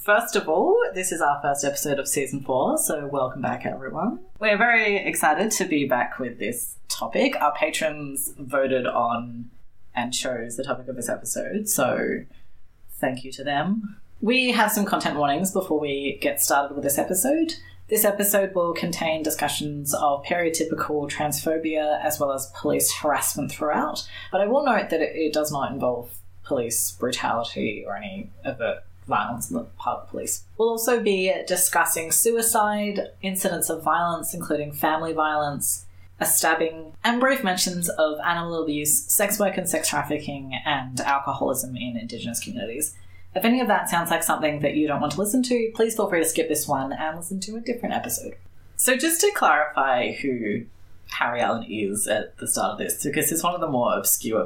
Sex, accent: female, Australian